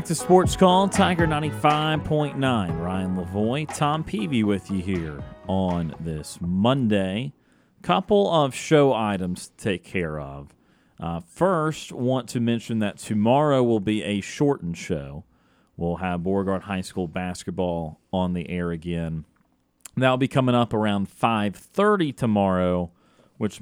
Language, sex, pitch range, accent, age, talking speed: English, male, 90-125 Hz, American, 30-49, 135 wpm